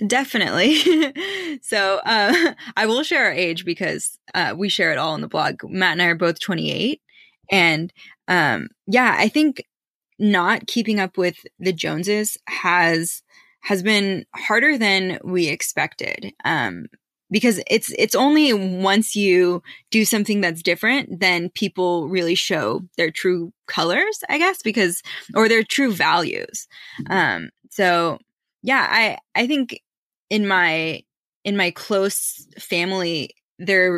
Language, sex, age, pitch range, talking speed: English, female, 20-39, 180-225 Hz, 140 wpm